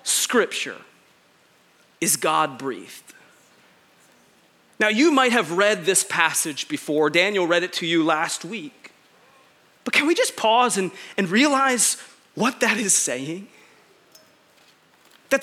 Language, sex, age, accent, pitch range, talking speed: English, male, 30-49, American, 200-310 Hz, 120 wpm